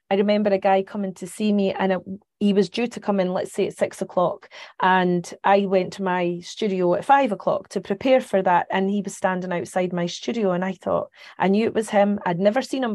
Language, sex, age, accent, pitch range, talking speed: English, female, 30-49, British, 185-215 Hz, 245 wpm